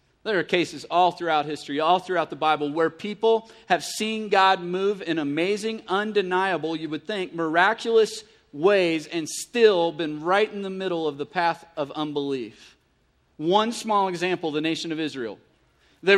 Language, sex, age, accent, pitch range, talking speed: English, male, 40-59, American, 170-215 Hz, 165 wpm